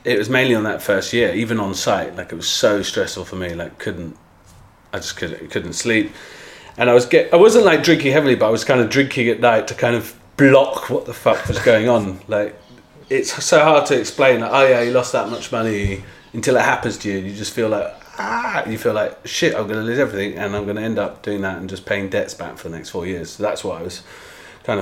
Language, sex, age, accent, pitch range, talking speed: English, male, 30-49, British, 95-120 Hz, 265 wpm